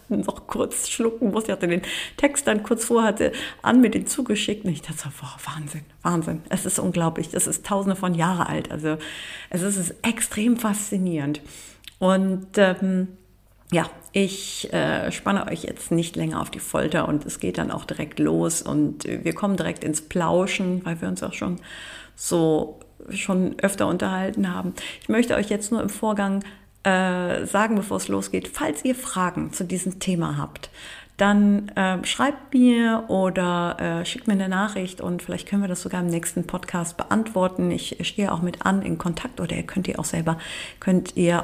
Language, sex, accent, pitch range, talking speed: German, female, German, 160-200 Hz, 185 wpm